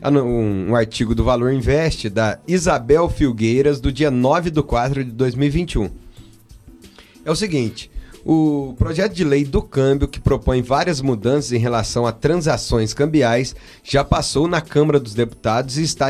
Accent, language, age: Brazilian, Portuguese, 30-49